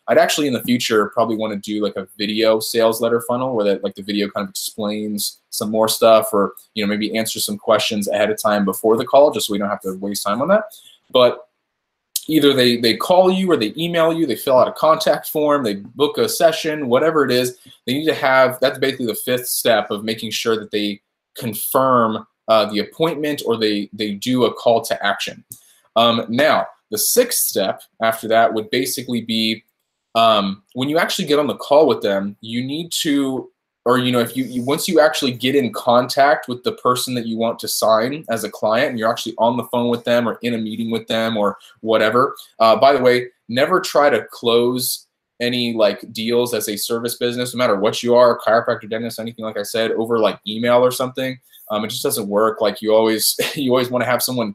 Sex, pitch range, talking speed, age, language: male, 110-130 Hz, 225 wpm, 20-39, English